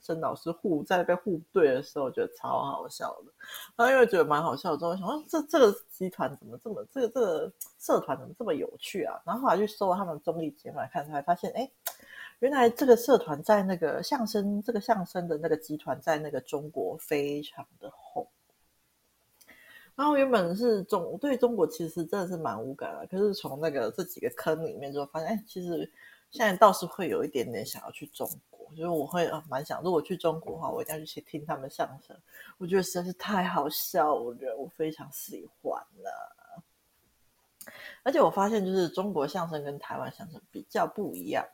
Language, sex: Chinese, female